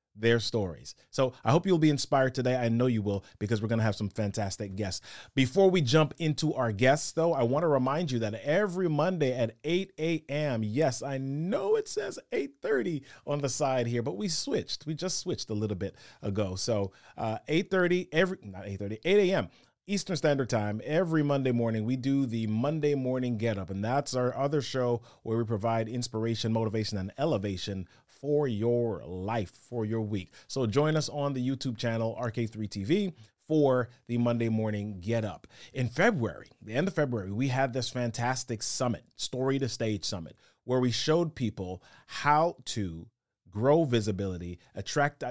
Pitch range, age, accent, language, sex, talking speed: 110-145 Hz, 30-49, American, English, male, 180 wpm